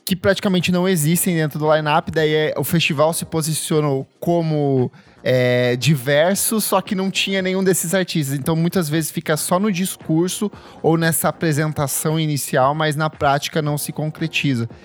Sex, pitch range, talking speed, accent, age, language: male, 145-185 Hz, 160 wpm, Brazilian, 10-29, Portuguese